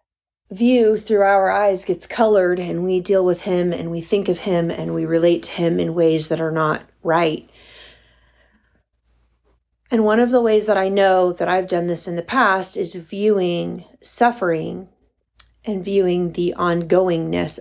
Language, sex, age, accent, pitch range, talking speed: English, female, 30-49, American, 170-205 Hz, 165 wpm